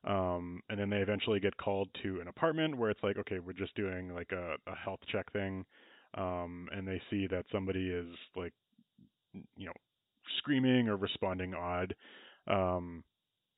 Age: 20-39